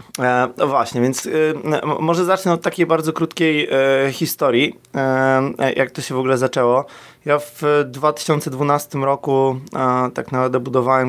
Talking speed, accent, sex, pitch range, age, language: 150 wpm, native, male, 125-145 Hz, 20-39, Polish